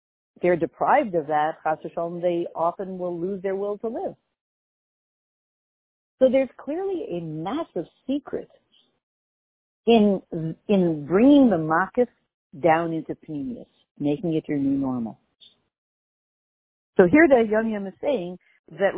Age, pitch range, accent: 50-69, 155-225 Hz, American